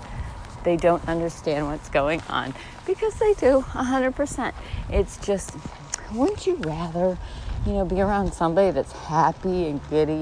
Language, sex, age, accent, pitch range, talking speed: English, female, 40-59, American, 120-195 Hz, 155 wpm